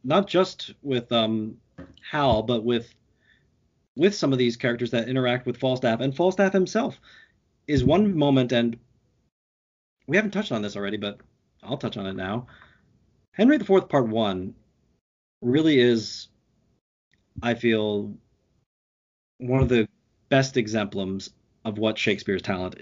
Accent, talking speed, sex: American, 140 wpm, male